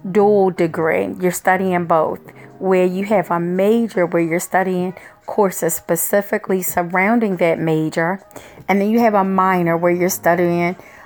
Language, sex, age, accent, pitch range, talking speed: English, female, 40-59, American, 170-220 Hz, 145 wpm